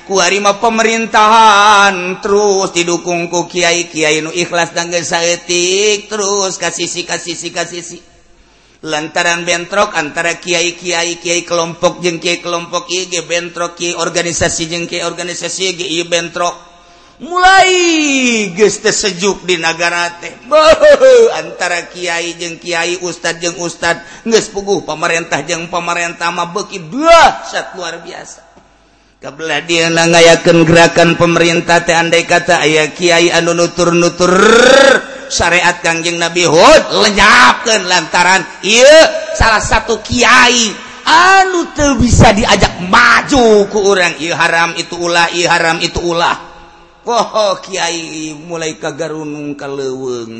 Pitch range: 170-200 Hz